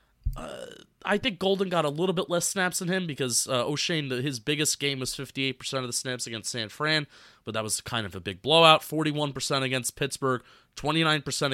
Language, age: English, 30-49